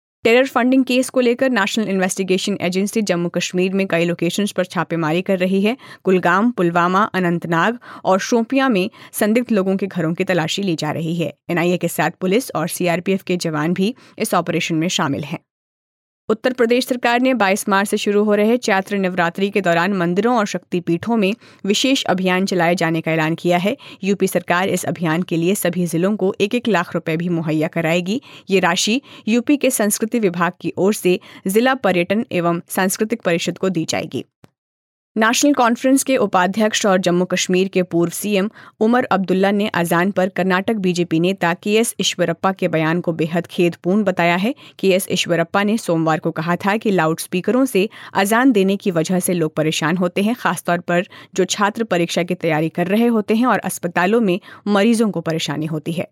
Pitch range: 170-210 Hz